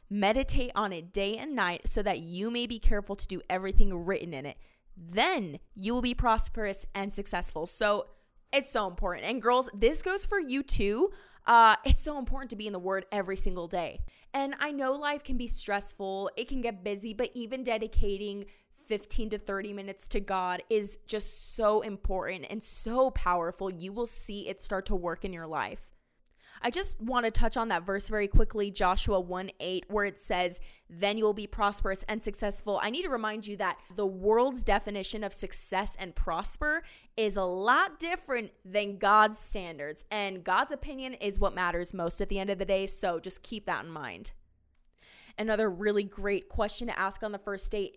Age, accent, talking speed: 20-39, American, 195 wpm